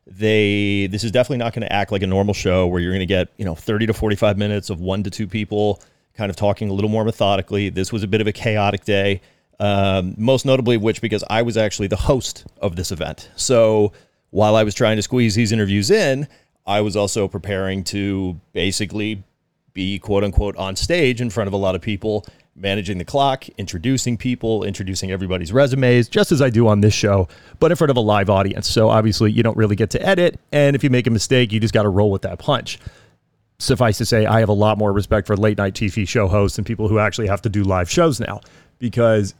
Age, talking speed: 30-49, 235 wpm